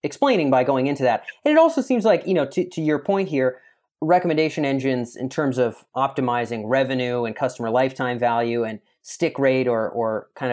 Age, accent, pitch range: 30-49, American, 125-165 Hz